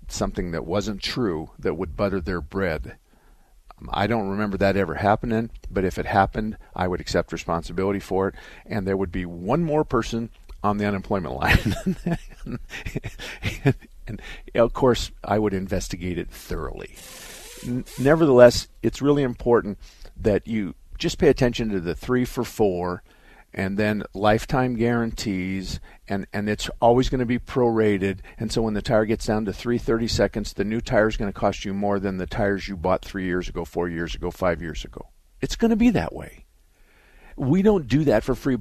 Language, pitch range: English, 95-120 Hz